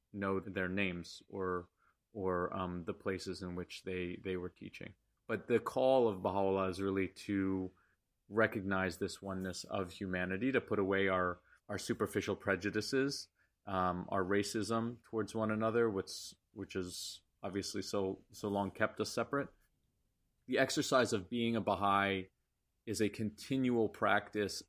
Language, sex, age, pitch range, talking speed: English, male, 30-49, 95-105 Hz, 145 wpm